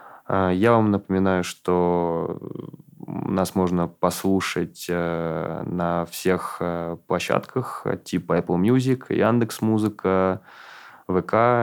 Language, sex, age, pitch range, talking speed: Russian, male, 20-39, 90-100 Hz, 75 wpm